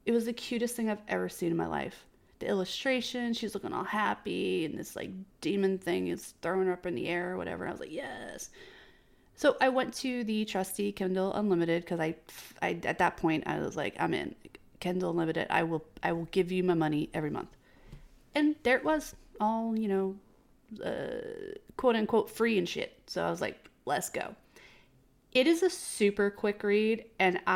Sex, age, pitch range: female, 30-49, 180-230 Hz